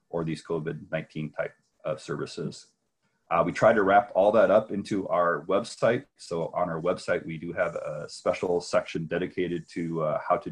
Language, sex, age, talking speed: English, male, 30-49, 185 wpm